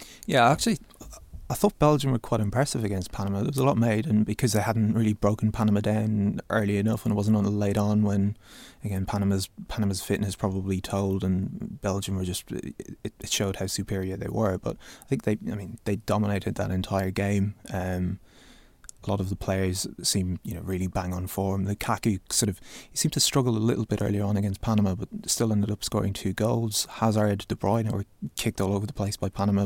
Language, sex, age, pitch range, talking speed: English, male, 20-39, 100-110 Hz, 210 wpm